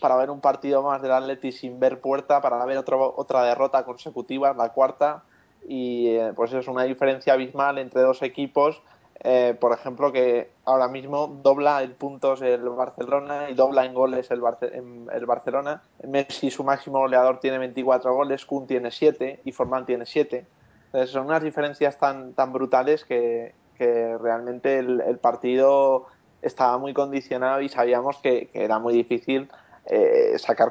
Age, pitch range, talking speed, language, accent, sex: 20-39, 125-140 Hz, 170 wpm, Spanish, Spanish, male